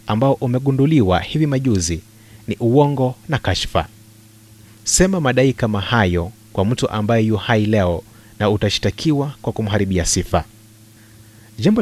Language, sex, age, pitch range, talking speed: Swahili, male, 30-49, 105-120 Hz, 120 wpm